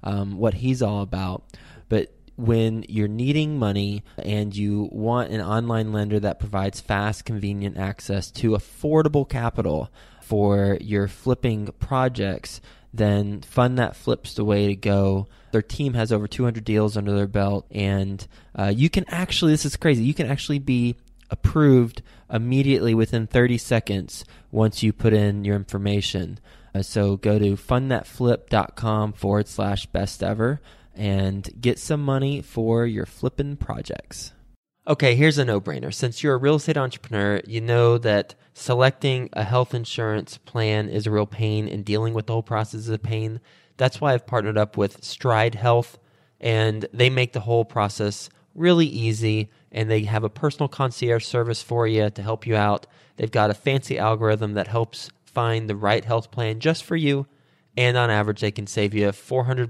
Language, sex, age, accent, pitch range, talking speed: English, male, 20-39, American, 105-125 Hz, 170 wpm